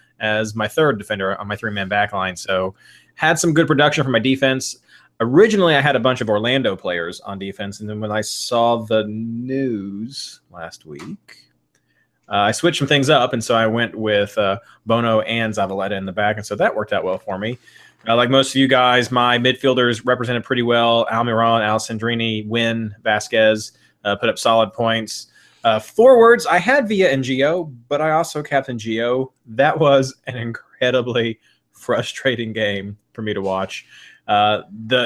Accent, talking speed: American, 180 wpm